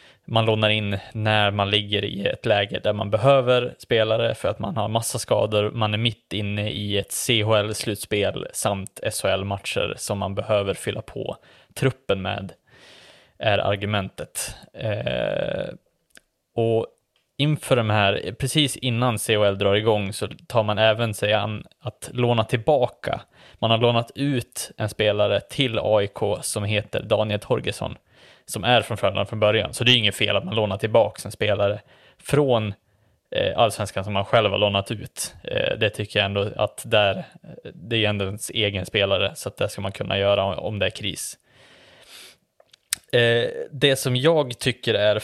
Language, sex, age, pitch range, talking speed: Swedish, male, 20-39, 100-120 Hz, 160 wpm